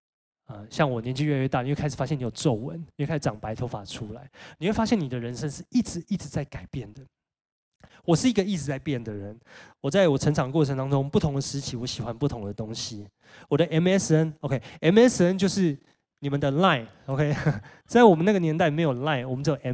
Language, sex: Chinese, male